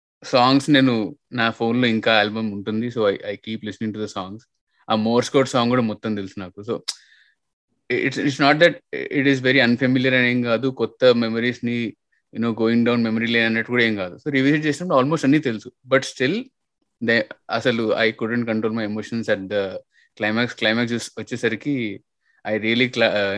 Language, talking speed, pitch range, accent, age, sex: Telugu, 180 wpm, 110-135 Hz, native, 20-39, male